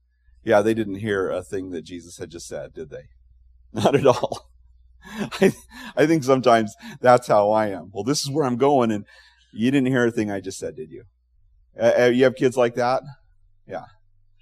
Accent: American